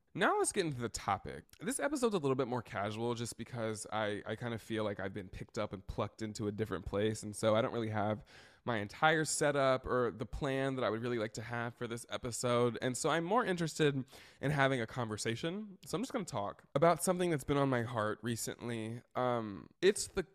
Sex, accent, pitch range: male, American, 110-145 Hz